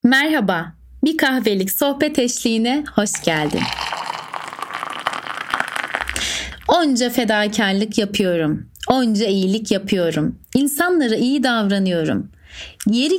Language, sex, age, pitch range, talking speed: Turkish, female, 30-49, 180-255 Hz, 75 wpm